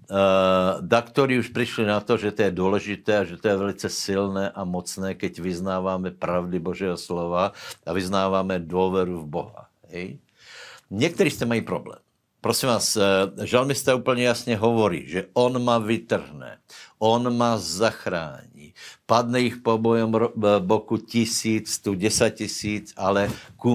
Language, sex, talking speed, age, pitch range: Slovak, male, 145 wpm, 60-79, 90-110 Hz